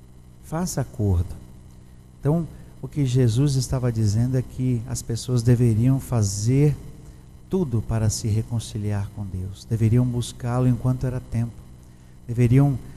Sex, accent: male, Brazilian